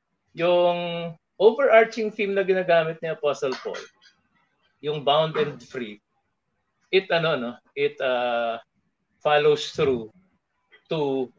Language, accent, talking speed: English, Filipino, 105 wpm